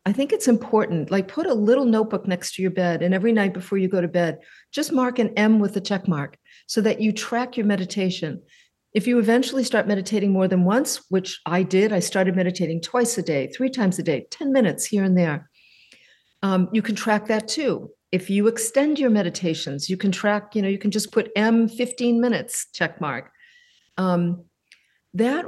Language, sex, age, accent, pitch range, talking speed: English, female, 50-69, American, 180-225 Hz, 205 wpm